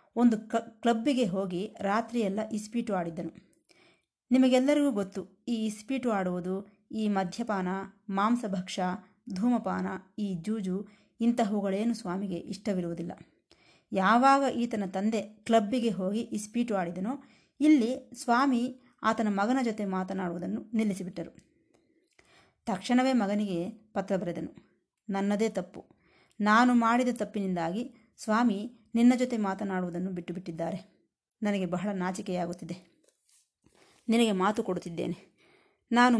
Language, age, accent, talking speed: Kannada, 30-49, native, 95 wpm